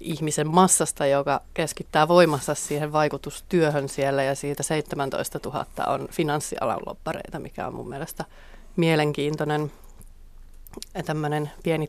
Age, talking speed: 30-49, 105 wpm